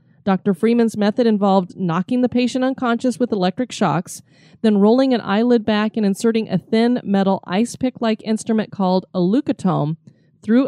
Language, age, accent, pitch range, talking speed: English, 30-49, American, 180-230 Hz, 155 wpm